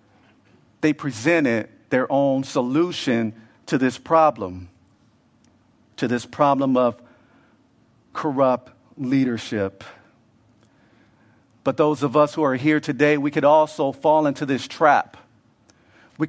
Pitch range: 130-175 Hz